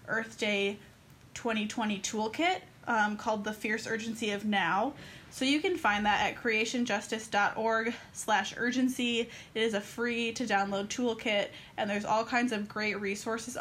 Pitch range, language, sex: 205-240 Hz, English, female